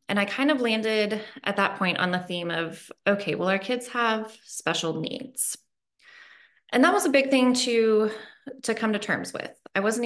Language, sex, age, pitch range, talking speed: English, female, 20-39, 180-230 Hz, 195 wpm